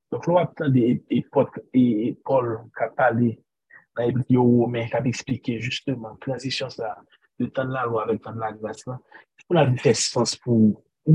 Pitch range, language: 120-135 Hz, French